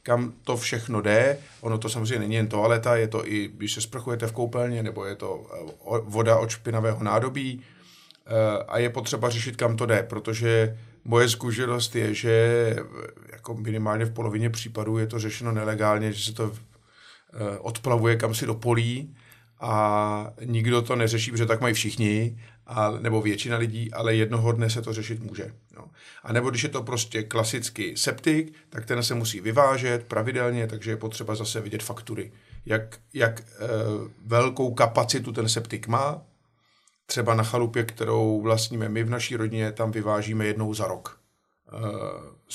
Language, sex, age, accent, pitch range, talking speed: Czech, male, 50-69, native, 110-120 Hz, 160 wpm